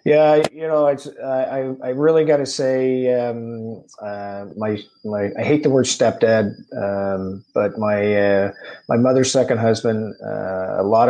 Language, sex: English, male